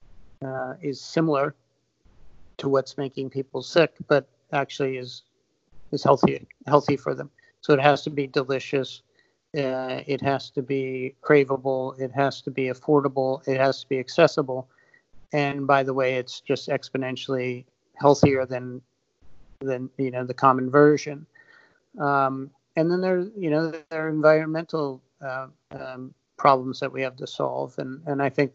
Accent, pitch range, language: American, 130-145 Hz, English